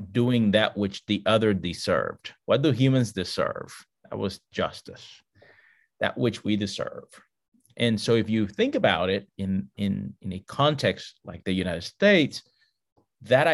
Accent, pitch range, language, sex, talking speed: American, 100-130 Hz, English, male, 145 wpm